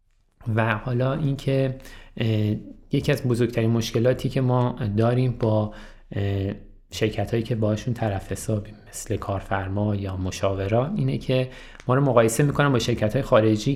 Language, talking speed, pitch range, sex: Persian, 145 wpm, 105-130 Hz, male